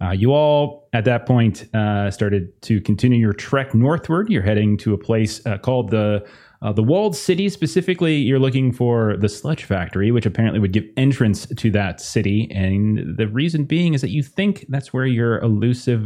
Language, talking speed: English, 195 wpm